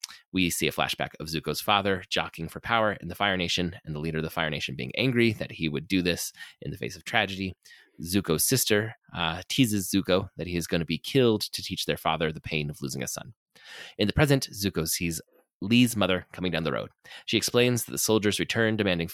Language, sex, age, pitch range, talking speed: English, male, 20-39, 80-110 Hz, 230 wpm